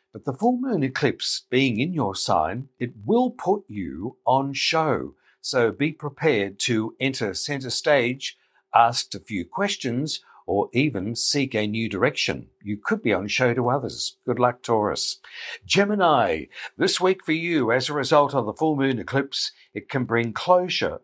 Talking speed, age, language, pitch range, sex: 170 wpm, 60-79, English, 115-150 Hz, male